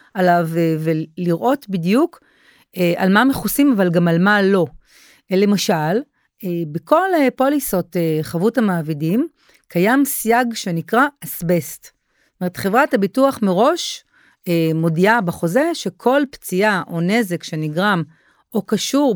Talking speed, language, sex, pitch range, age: 105 wpm, Hebrew, female, 175-260 Hz, 40-59